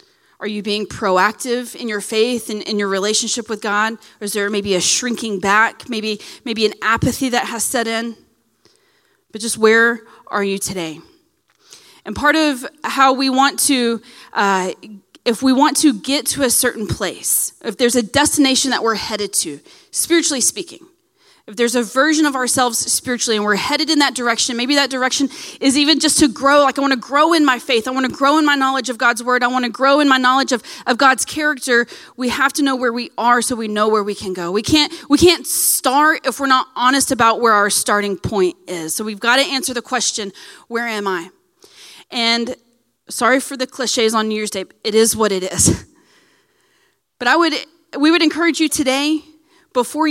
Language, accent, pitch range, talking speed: English, American, 225-290 Hz, 205 wpm